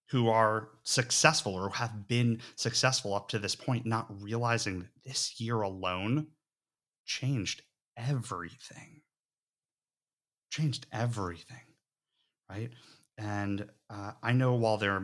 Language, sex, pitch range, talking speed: English, male, 90-125 Hz, 115 wpm